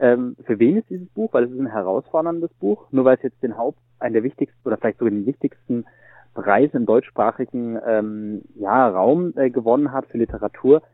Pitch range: 115-140 Hz